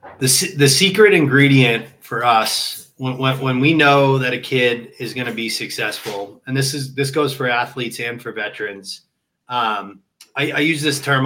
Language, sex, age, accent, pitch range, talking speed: English, male, 20-39, American, 120-145 Hz, 180 wpm